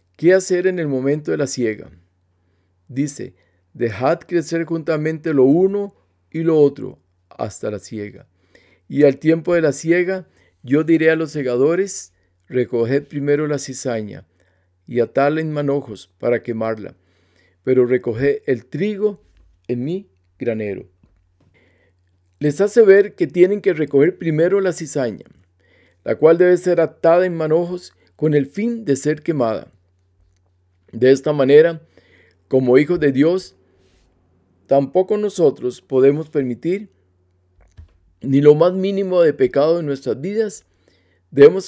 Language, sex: Spanish, male